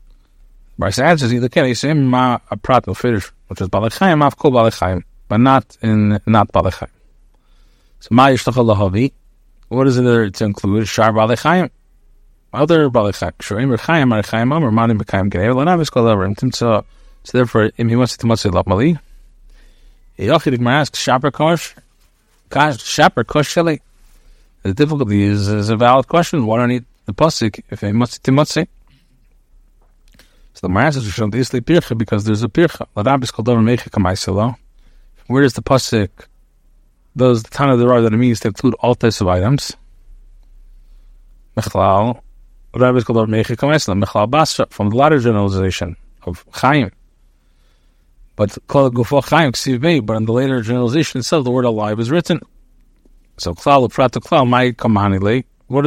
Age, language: 30-49, English